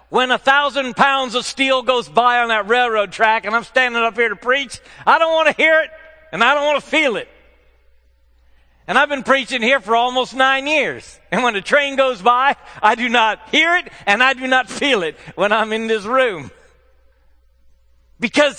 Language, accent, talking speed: English, American, 205 wpm